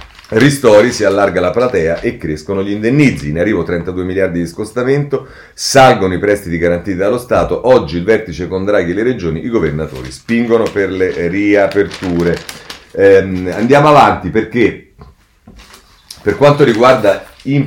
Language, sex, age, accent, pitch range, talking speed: Italian, male, 40-59, native, 85-115 Hz, 145 wpm